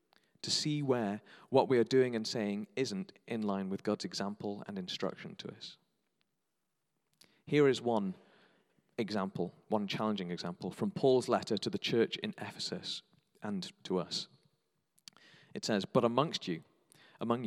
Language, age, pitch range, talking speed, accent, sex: English, 40-59, 110-165 Hz, 150 wpm, British, male